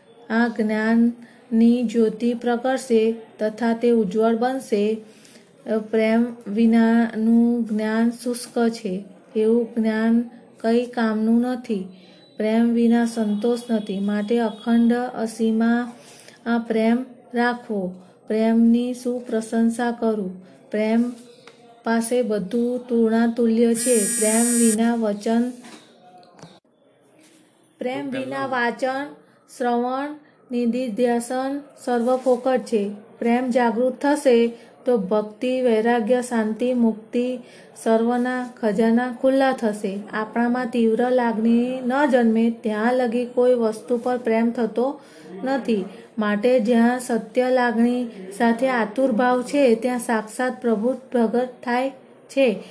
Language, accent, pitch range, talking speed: Gujarati, native, 225-250 Hz, 95 wpm